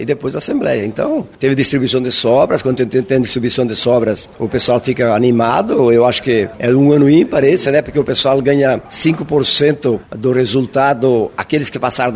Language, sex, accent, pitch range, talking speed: Portuguese, male, Brazilian, 120-145 Hz, 185 wpm